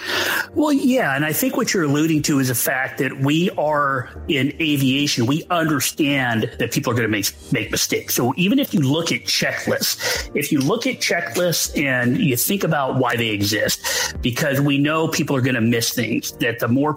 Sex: male